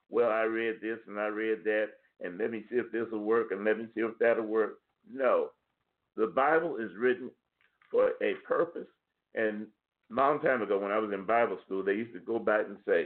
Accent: American